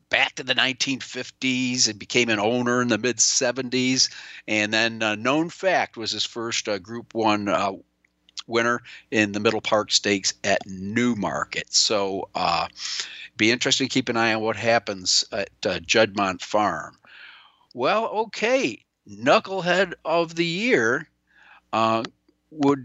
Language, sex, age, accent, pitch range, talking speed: English, male, 50-69, American, 105-135 Hz, 145 wpm